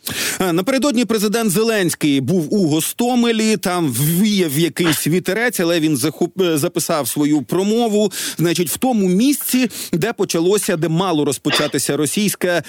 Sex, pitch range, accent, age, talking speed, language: male, 160-200 Hz, native, 40-59, 125 wpm, Ukrainian